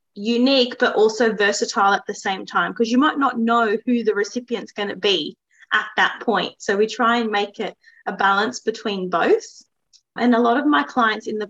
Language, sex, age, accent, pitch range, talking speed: English, female, 20-39, Australian, 200-240 Hz, 210 wpm